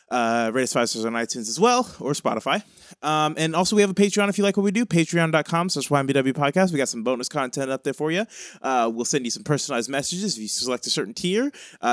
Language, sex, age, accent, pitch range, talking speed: English, male, 20-39, American, 115-160 Hz, 240 wpm